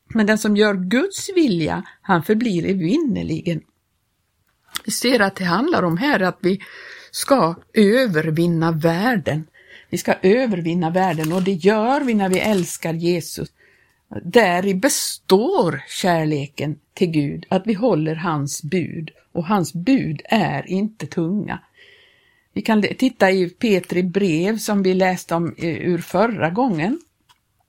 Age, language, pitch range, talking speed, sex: 60-79, Swedish, 170-225 Hz, 140 wpm, female